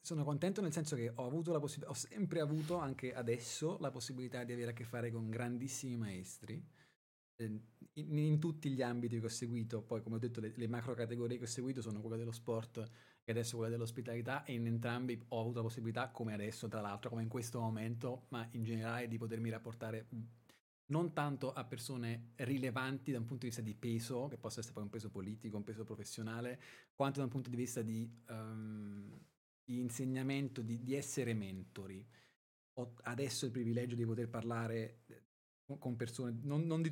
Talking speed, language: 195 wpm, Italian